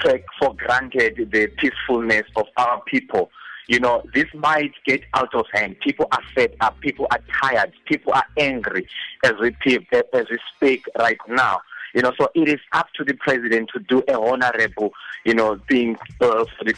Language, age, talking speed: English, 30-49, 175 wpm